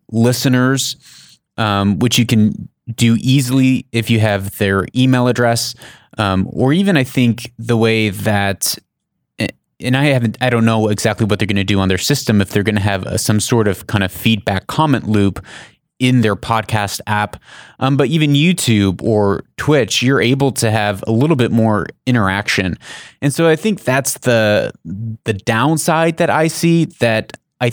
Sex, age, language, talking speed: male, 30-49, English, 175 wpm